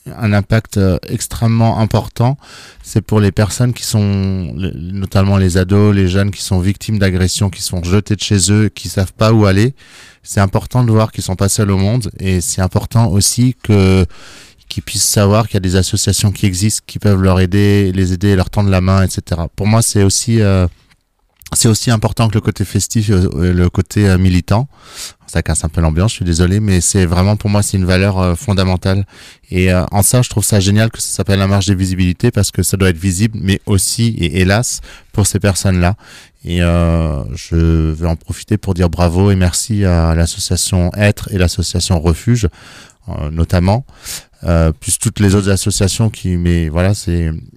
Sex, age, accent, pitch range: male, 30-49, French, 90-105 Hz